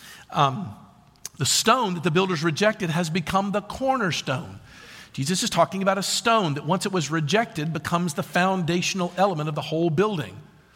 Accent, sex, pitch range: American, male, 140-215 Hz